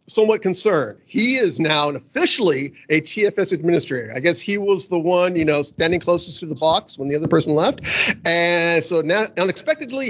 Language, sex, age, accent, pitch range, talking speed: English, male, 40-59, American, 145-195 Hz, 185 wpm